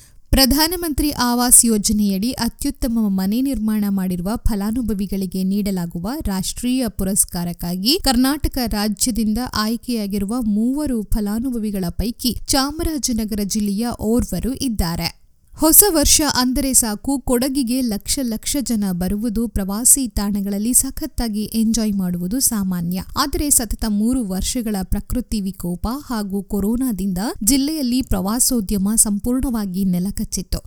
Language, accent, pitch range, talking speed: Kannada, native, 200-250 Hz, 90 wpm